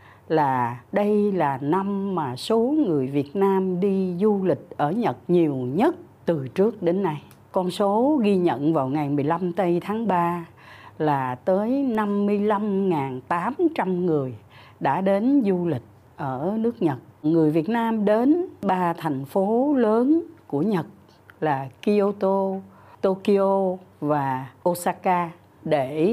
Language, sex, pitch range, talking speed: Vietnamese, female, 145-220 Hz, 130 wpm